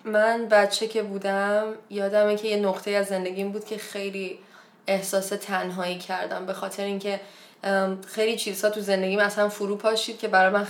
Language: Persian